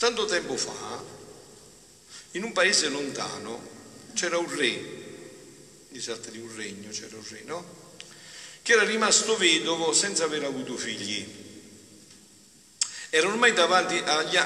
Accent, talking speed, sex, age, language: native, 120 wpm, male, 50-69, Italian